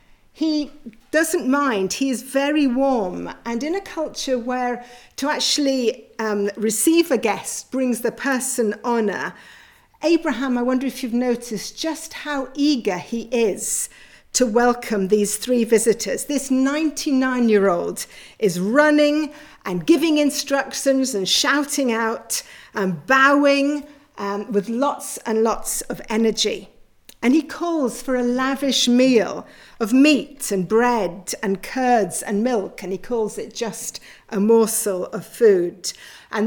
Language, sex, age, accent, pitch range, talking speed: English, female, 50-69, British, 210-275 Hz, 135 wpm